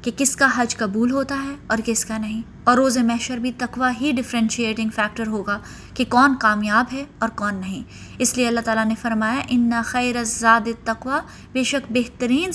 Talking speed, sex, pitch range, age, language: 190 wpm, female, 225-275 Hz, 20-39, Urdu